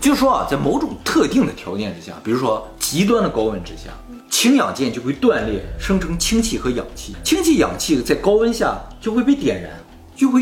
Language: Chinese